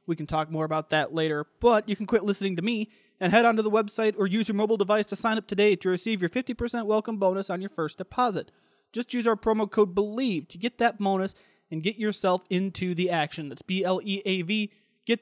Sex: male